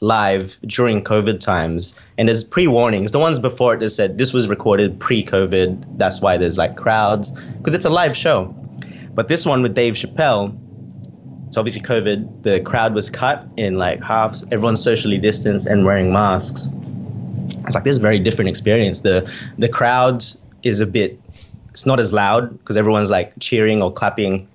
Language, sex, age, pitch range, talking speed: English, male, 20-39, 100-125 Hz, 180 wpm